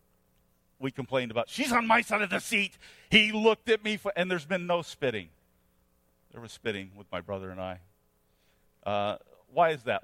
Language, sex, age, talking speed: English, male, 50-69, 185 wpm